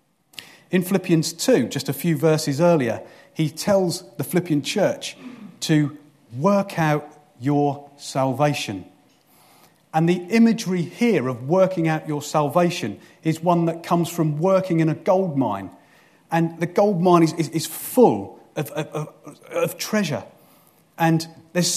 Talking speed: 145 wpm